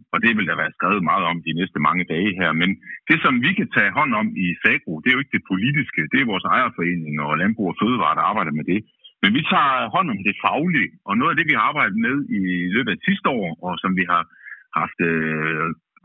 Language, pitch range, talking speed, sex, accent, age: Danish, 85-145 Hz, 250 wpm, male, native, 50-69